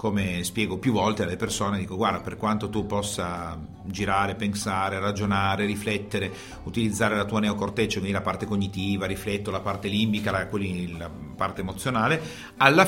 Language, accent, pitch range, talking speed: Italian, native, 95-115 Hz, 155 wpm